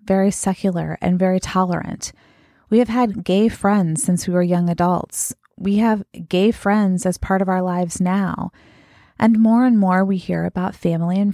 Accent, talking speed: American, 180 wpm